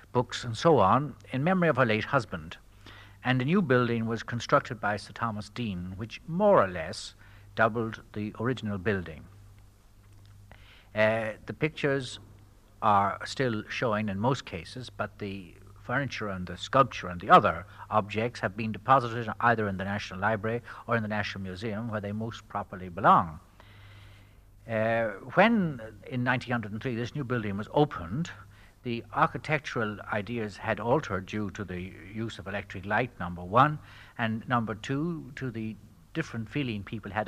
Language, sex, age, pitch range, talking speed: English, male, 60-79, 100-120 Hz, 155 wpm